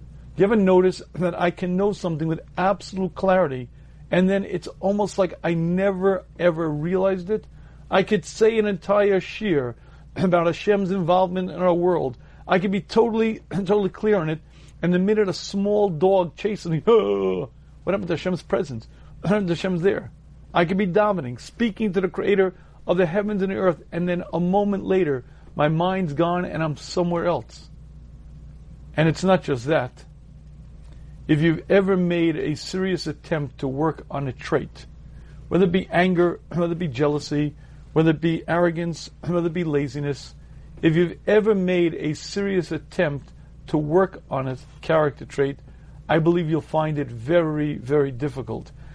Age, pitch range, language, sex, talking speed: 40-59, 150-190 Hz, English, male, 170 wpm